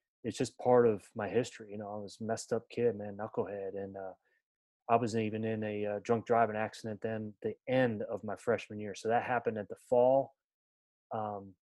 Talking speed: 215 wpm